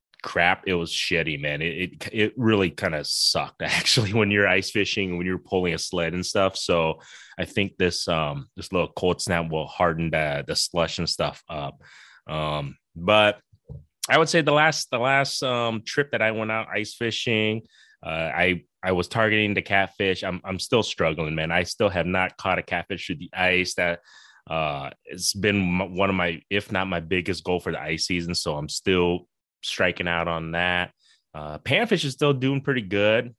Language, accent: English, American